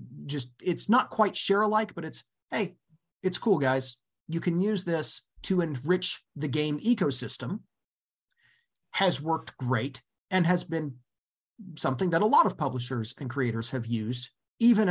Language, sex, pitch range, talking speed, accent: English, male, 125-200 Hz, 150 wpm, American